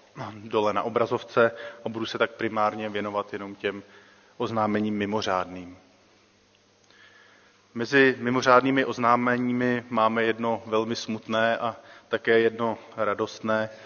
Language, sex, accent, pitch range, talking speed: Czech, male, native, 105-120 Hz, 105 wpm